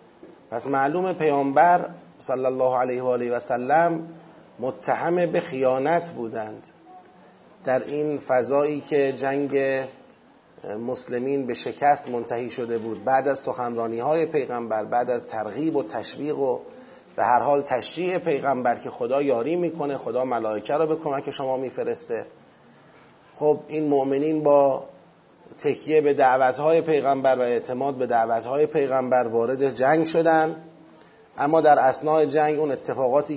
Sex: male